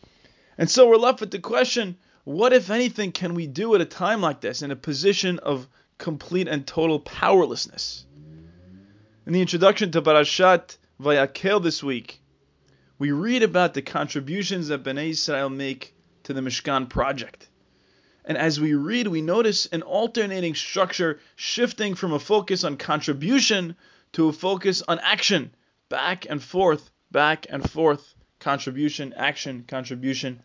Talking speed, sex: 150 wpm, male